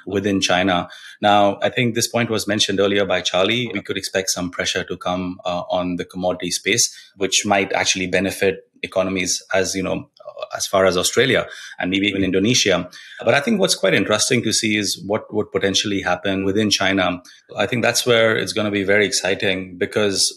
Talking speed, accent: 195 wpm, Indian